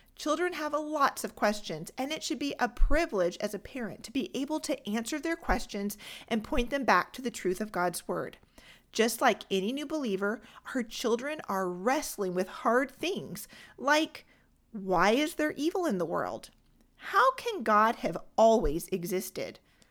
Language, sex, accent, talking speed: English, female, American, 170 wpm